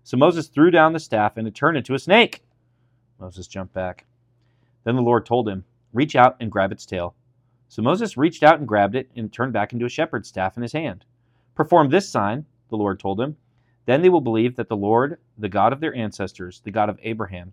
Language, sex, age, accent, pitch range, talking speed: English, male, 30-49, American, 105-130 Hz, 225 wpm